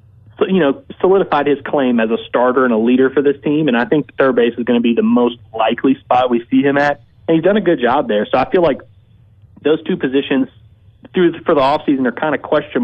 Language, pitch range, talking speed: English, 115-140 Hz, 250 wpm